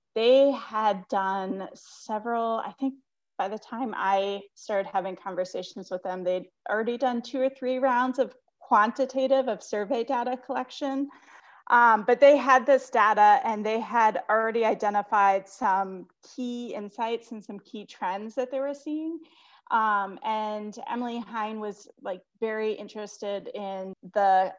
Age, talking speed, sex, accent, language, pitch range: 30-49, 145 wpm, female, American, English, 195-245 Hz